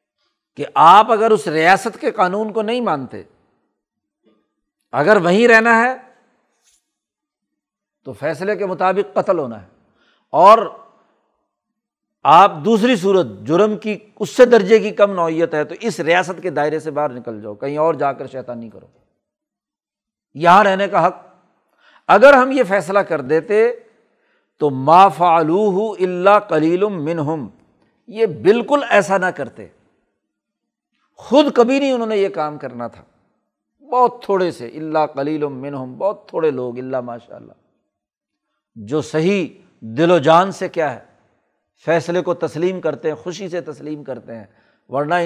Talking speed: 145 wpm